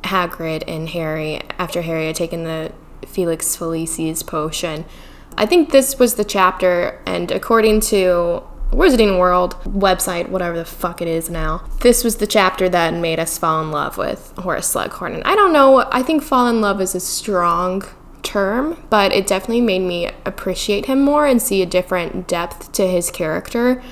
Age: 10-29